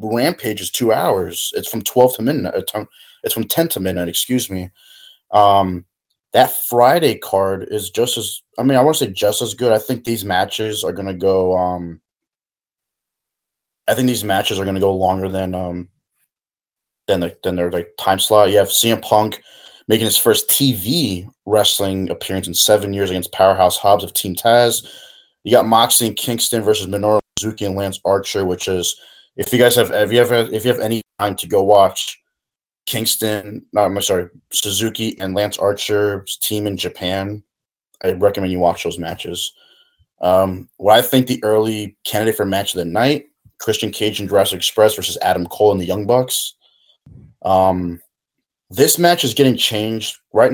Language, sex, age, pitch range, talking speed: English, male, 20-39, 95-115 Hz, 185 wpm